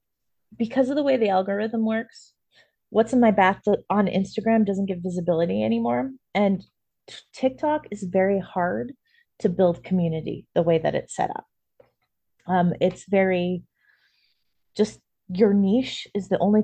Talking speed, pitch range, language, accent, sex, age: 145 wpm, 175-220 Hz, English, American, female, 20-39